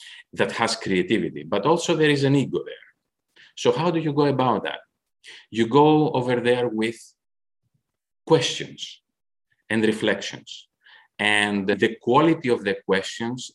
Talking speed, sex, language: 135 wpm, male, English